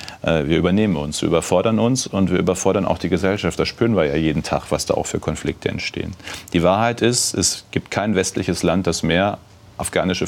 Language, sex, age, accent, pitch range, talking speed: German, male, 40-59, German, 85-100 Hz, 205 wpm